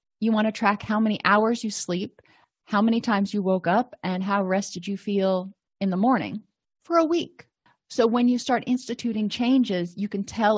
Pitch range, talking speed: 185-230 Hz, 200 wpm